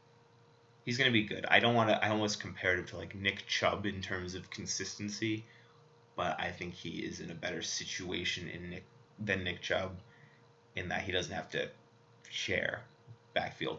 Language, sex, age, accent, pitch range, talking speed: English, male, 20-39, American, 95-115 Hz, 185 wpm